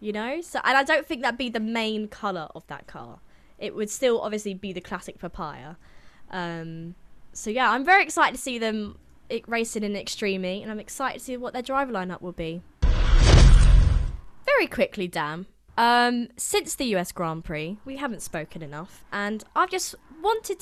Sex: female